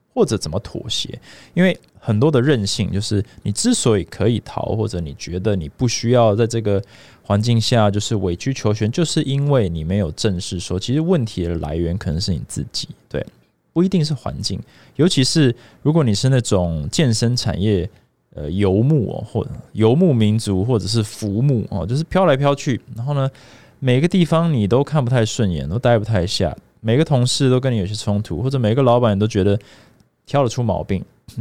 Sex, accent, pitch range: male, native, 100-130 Hz